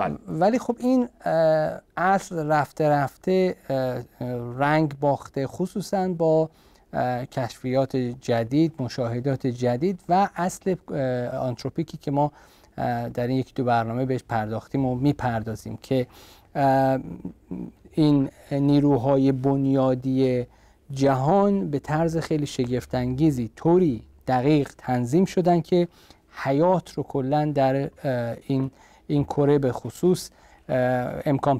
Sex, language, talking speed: male, Persian, 100 wpm